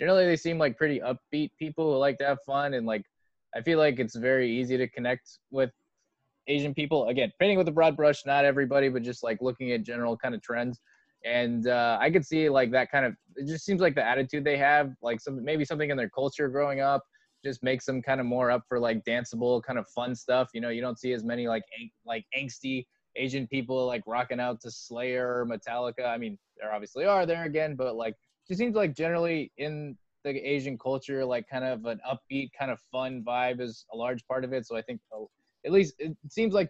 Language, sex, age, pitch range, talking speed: English, male, 20-39, 115-145 Hz, 230 wpm